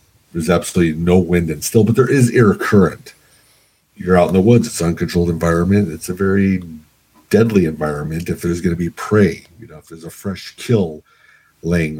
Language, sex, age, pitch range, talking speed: English, male, 50-69, 85-100 Hz, 195 wpm